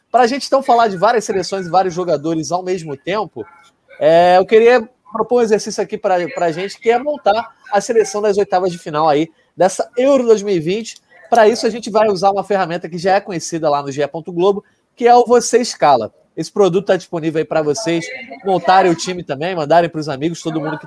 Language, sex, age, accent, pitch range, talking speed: Portuguese, male, 20-39, Brazilian, 165-215 Hz, 215 wpm